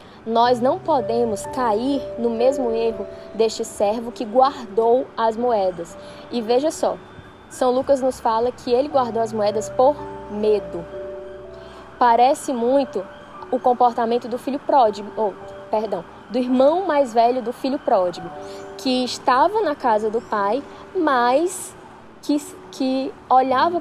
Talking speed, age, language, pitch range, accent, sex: 135 wpm, 10-29, Portuguese, 215-260 Hz, Brazilian, female